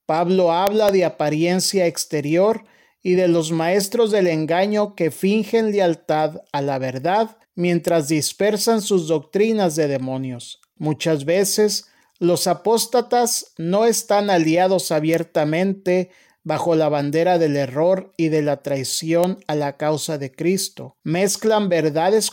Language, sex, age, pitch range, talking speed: Spanish, male, 40-59, 155-195 Hz, 125 wpm